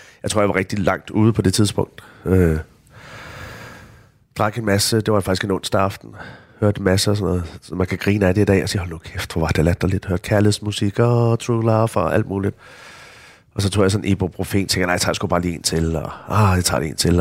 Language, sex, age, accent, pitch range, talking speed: Danish, male, 30-49, native, 90-110 Hz, 255 wpm